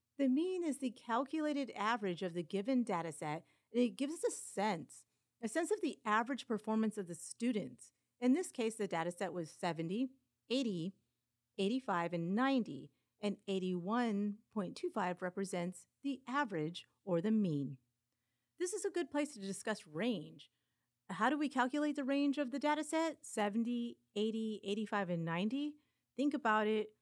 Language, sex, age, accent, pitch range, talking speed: English, female, 40-59, American, 180-265 Hz, 160 wpm